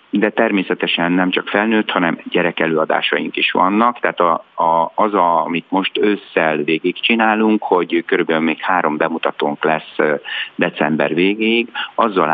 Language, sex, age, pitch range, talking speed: Hungarian, male, 50-69, 80-95 Hz, 130 wpm